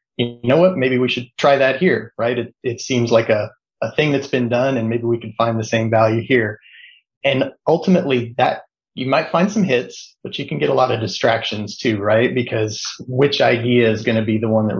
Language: English